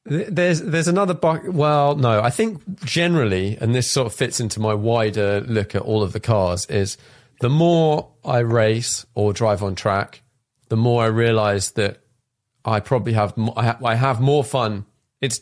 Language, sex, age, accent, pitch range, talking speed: English, male, 30-49, British, 100-130 Hz, 180 wpm